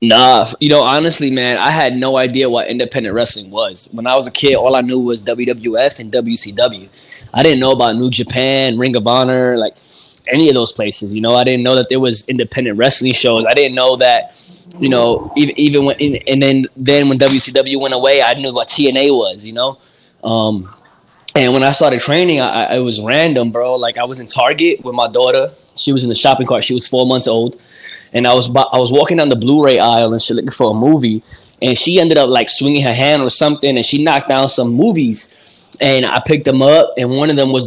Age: 20-39